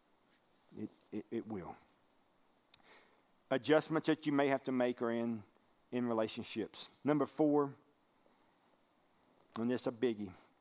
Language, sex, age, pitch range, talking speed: English, male, 40-59, 125-165 Hz, 105 wpm